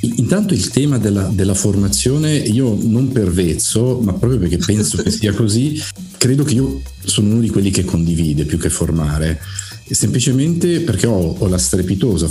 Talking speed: 170 wpm